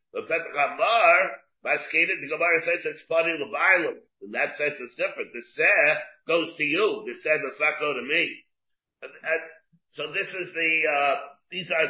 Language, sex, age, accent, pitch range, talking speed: English, male, 50-69, American, 140-180 Hz, 185 wpm